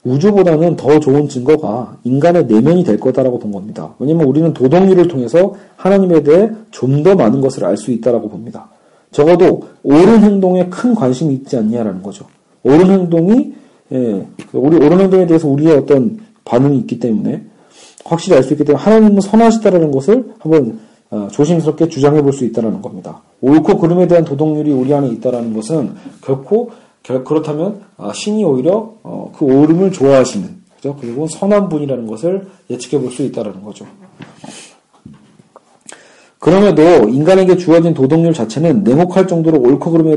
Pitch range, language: 140-195 Hz, Korean